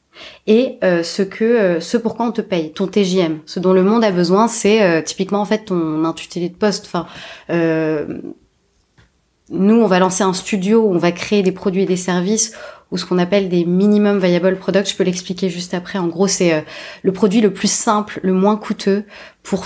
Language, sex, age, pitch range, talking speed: French, female, 20-39, 175-210 Hz, 210 wpm